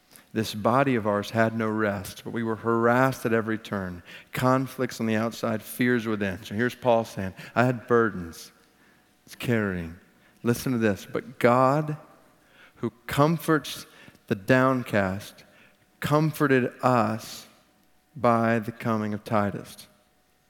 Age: 40-59